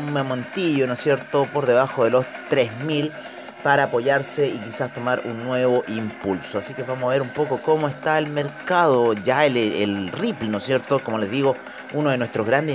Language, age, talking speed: Spanish, 30-49, 195 wpm